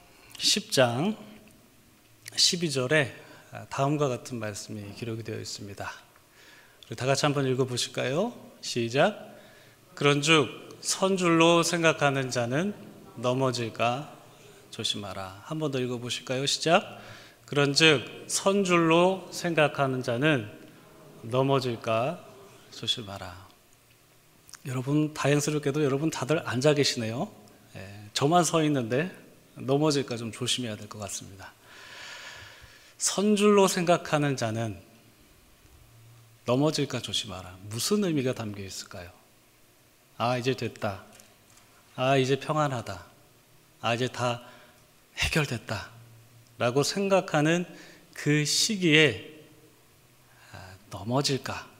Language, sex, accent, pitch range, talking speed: English, male, Korean, 110-150 Hz, 85 wpm